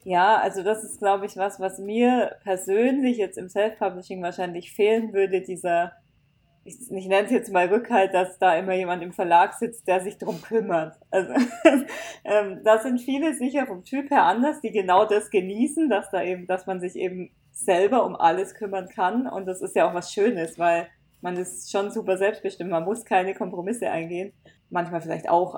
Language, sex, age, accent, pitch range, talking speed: German, female, 20-39, German, 175-200 Hz, 190 wpm